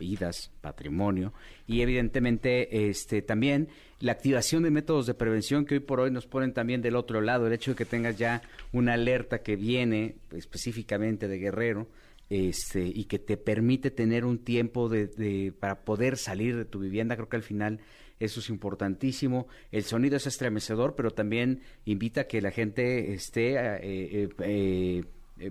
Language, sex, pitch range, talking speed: Spanish, male, 100-125 Hz, 175 wpm